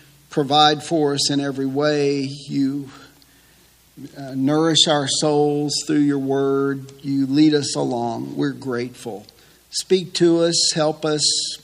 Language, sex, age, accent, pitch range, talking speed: English, male, 50-69, American, 150-185 Hz, 130 wpm